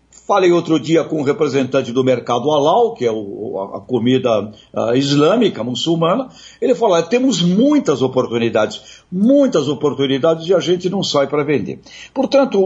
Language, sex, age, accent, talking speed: Portuguese, male, 60-79, Brazilian, 145 wpm